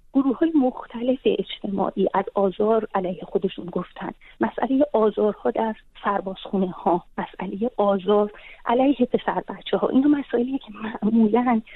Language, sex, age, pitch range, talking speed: Persian, female, 30-49, 200-245 Hz, 130 wpm